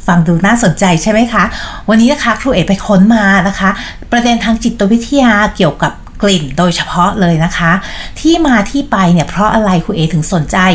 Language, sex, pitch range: Thai, female, 175-230 Hz